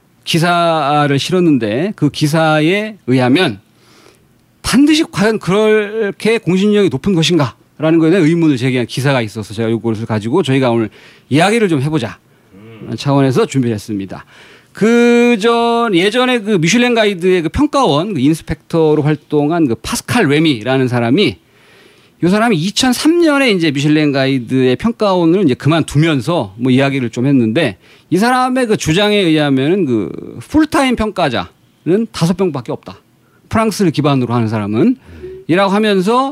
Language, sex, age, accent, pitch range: Korean, male, 40-59, native, 135-220 Hz